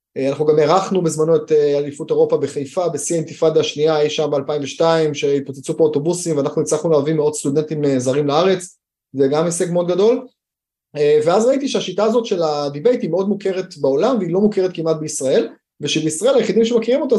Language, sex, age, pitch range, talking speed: Hebrew, male, 20-39, 150-190 Hz, 170 wpm